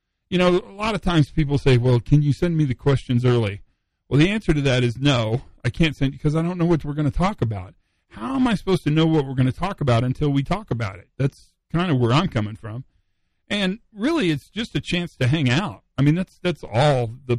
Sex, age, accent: male, 40-59, American